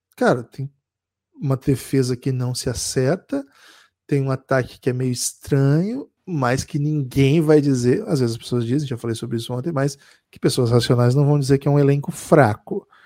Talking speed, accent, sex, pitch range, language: 195 wpm, Brazilian, male, 130-175 Hz, Portuguese